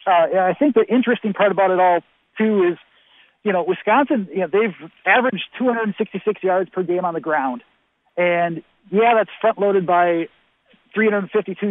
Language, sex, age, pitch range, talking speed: English, male, 40-59, 175-215 Hz, 160 wpm